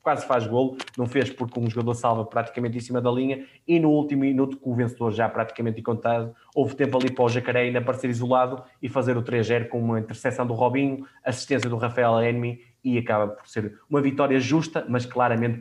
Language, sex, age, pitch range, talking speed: Portuguese, male, 20-39, 115-130 Hz, 220 wpm